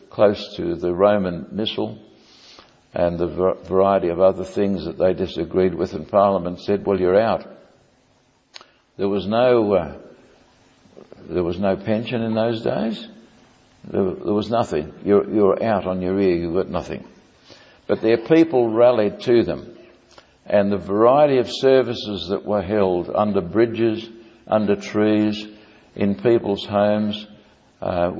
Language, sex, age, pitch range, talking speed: English, male, 60-79, 90-105 Hz, 145 wpm